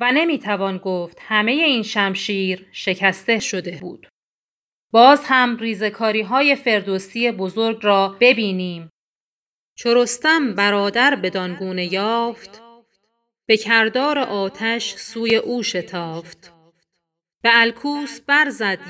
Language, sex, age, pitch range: Persian, female, 30-49, 195-245 Hz